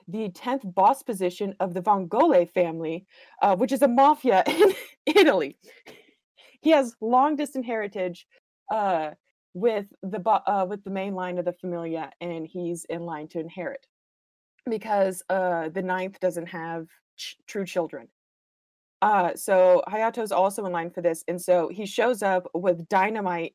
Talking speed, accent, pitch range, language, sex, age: 160 wpm, American, 175-220 Hz, English, female, 20-39